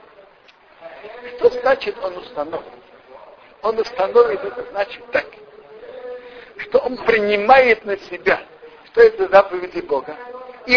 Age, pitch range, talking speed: 50-69, 195-280 Hz, 105 wpm